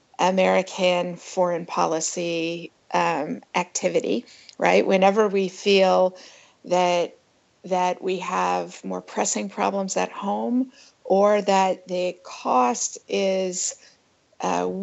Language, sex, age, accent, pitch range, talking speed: English, female, 50-69, American, 180-205 Hz, 95 wpm